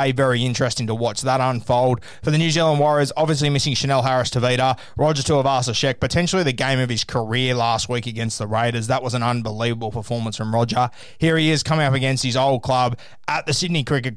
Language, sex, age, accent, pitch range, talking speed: English, male, 20-39, Australian, 120-140 Hz, 210 wpm